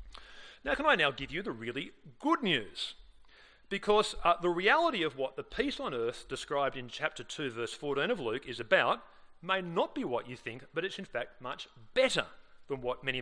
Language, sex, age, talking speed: English, male, 40-59, 205 wpm